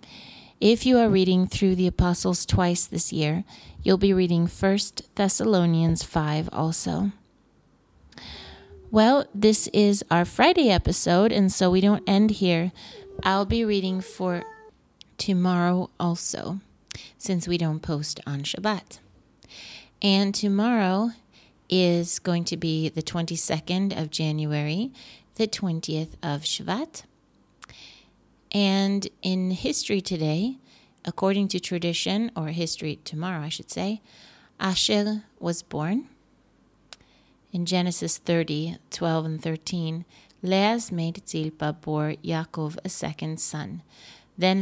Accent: American